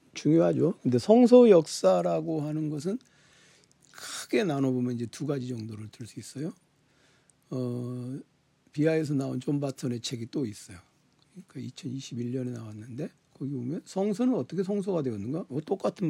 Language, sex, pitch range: Korean, male, 125-165 Hz